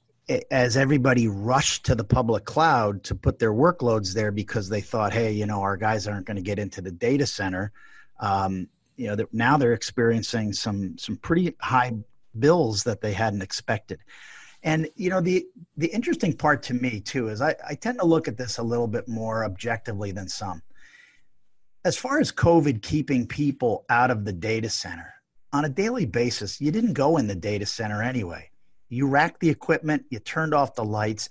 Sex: male